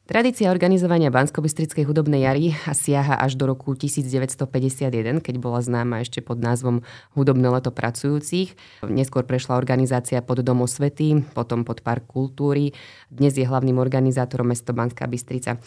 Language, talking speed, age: Slovak, 140 wpm, 20-39